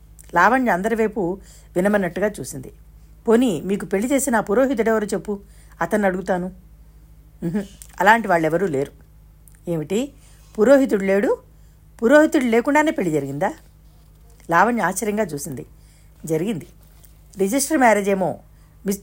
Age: 50-69